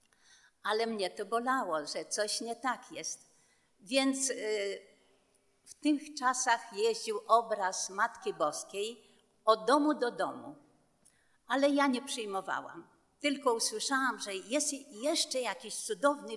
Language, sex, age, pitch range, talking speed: Polish, female, 50-69, 210-270 Hz, 115 wpm